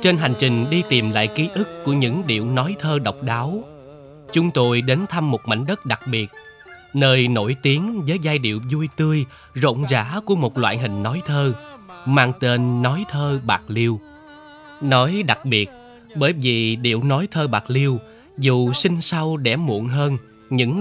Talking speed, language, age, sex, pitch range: 180 wpm, Vietnamese, 20-39, male, 120-165 Hz